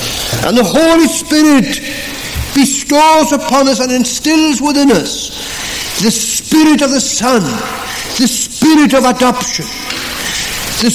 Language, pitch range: English, 215-270 Hz